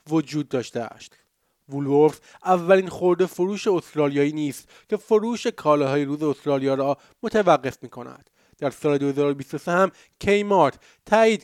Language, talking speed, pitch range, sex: Persian, 120 wpm, 140-185 Hz, male